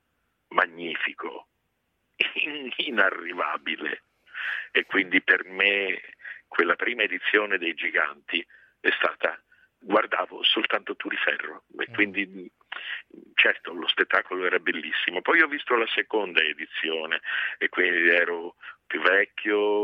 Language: Italian